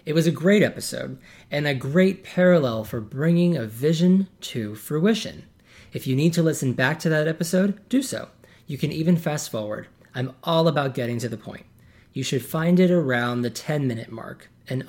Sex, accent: male, American